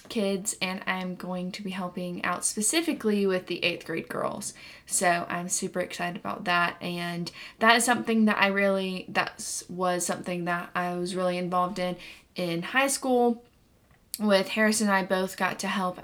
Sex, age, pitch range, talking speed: female, 10-29, 180-205 Hz, 175 wpm